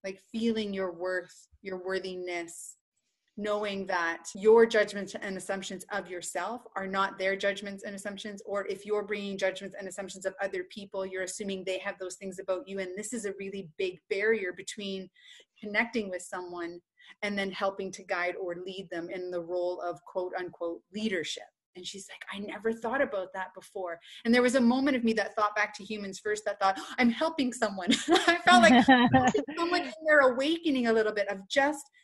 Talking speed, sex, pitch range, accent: 195 wpm, female, 190-230 Hz, American